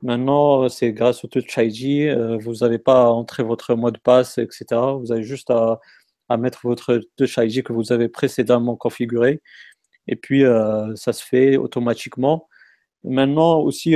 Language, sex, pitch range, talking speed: French, male, 115-130 Hz, 170 wpm